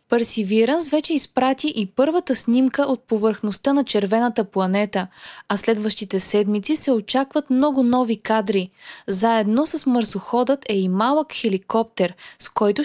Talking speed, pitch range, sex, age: 130 wpm, 210-265 Hz, female, 20-39